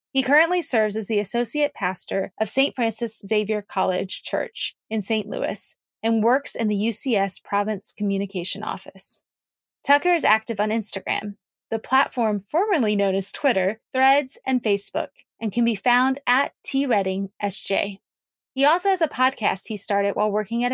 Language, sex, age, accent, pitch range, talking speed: English, female, 20-39, American, 200-245 Hz, 160 wpm